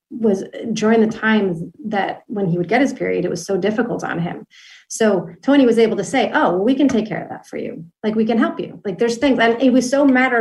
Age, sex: 30-49, female